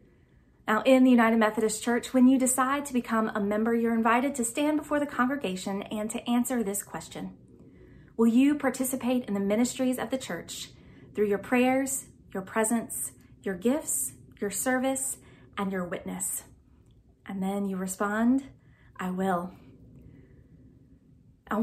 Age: 20-39